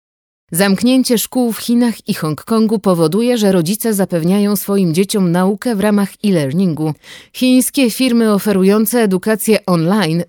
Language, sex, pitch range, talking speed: Polish, female, 175-220 Hz, 120 wpm